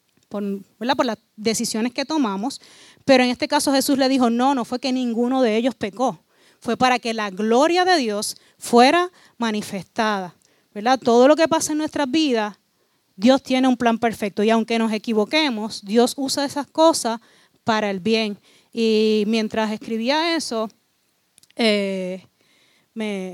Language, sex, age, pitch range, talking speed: Spanish, female, 30-49, 210-255 Hz, 155 wpm